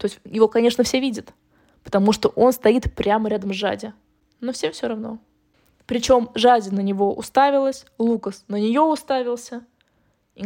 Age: 20-39